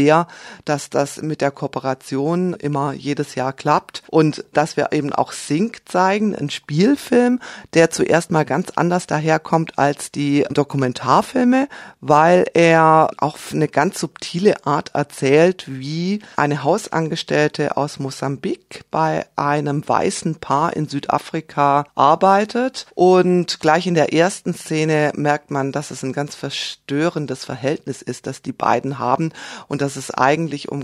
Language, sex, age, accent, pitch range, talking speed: German, female, 40-59, German, 140-170 Hz, 140 wpm